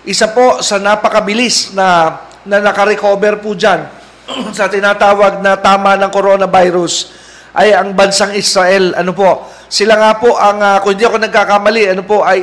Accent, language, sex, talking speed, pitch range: native, Filipino, male, 155 wpm, 190-215 Hz